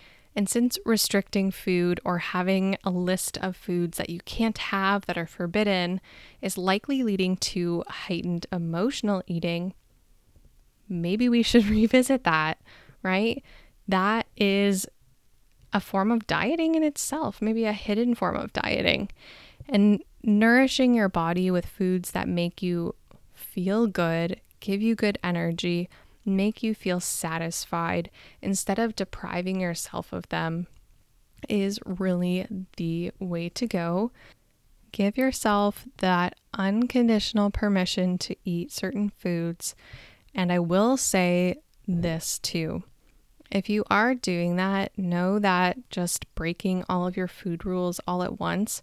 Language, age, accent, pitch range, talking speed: English, 10-29, American, 175-210 Hz, 130 wpm